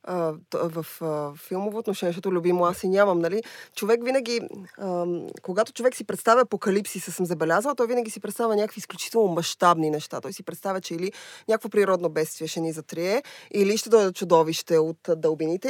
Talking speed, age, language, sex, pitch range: 170 wpm, 20-39, Bulgarian, female, 170-225 Hz